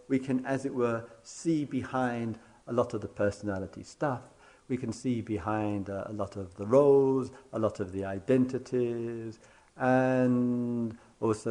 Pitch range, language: 105-135 Hz, English